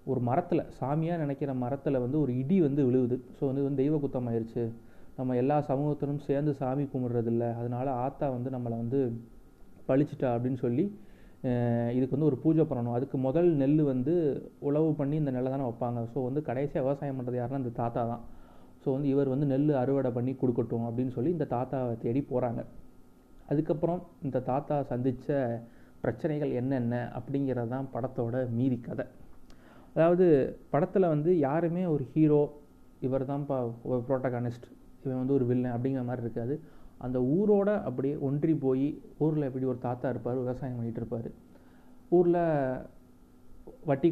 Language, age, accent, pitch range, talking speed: Tamil, 30-49, native, 125-145 Hz, 150 wpm